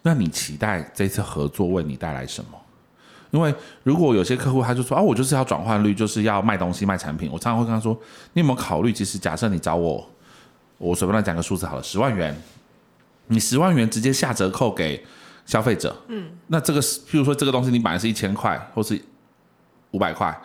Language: Chinese